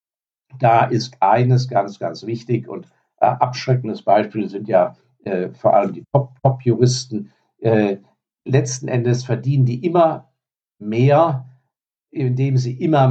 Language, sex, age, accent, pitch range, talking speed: German, male, 50-69, German, 115-130 Hz, 120 wpm